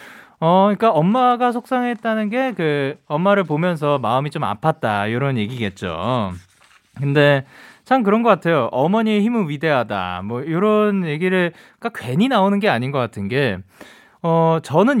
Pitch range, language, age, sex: 125-205 Hz, Korean, 20-39, male